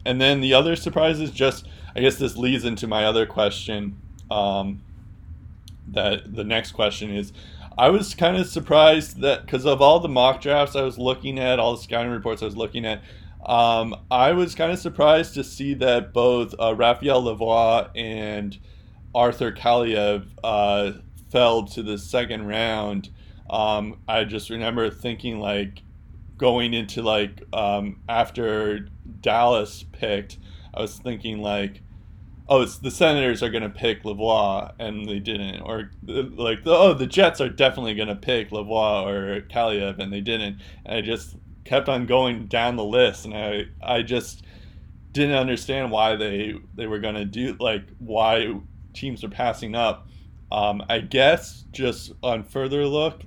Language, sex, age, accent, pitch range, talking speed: English, male, 20-39, American, 100-125 Hz, 165 wpm